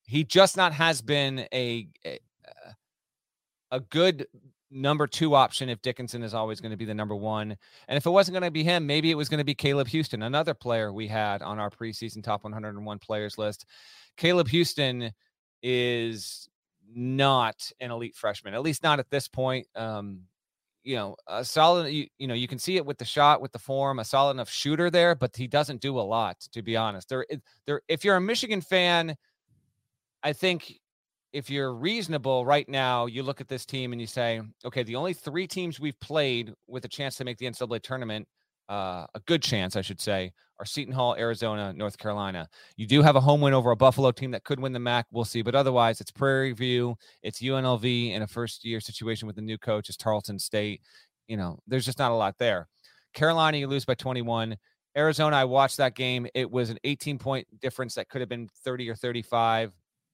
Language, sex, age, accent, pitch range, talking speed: English, male, 30-49, American, 115-145 Hz, 210 wpm